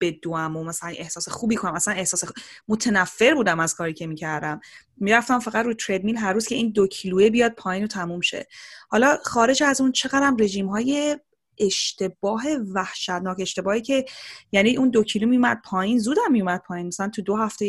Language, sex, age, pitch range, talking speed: Persian, female, 20-39, 190-230 Hz, 190 wpm